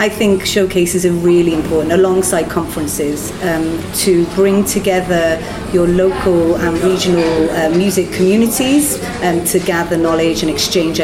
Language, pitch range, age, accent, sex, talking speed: French, 170-195 Hz, 40-59, British, female, 140 wpm